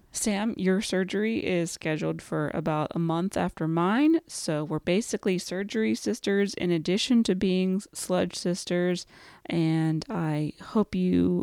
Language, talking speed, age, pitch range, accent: English, 135 wpm, 30-49, 170-205 Hz, American